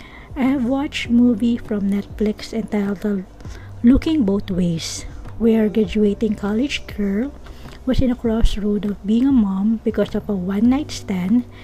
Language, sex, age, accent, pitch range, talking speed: English, female, 20-39, Filipino, 195-235 Hz, 145 wpm